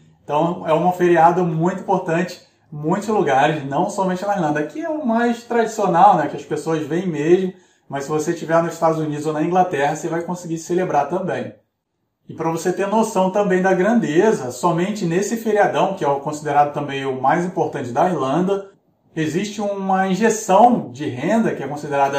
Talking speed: 185 wpm